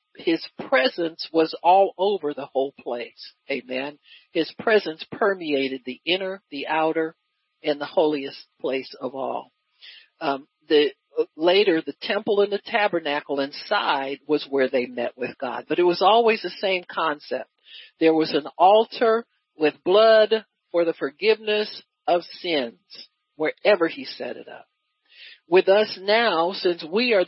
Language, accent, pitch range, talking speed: English, American, 160-245 Hz, 145 wpm